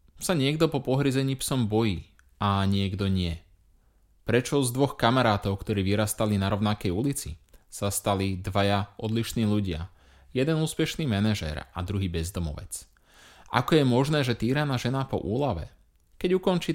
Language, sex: Slovak, male